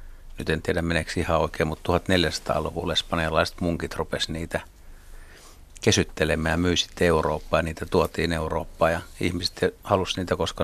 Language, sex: Finnish, male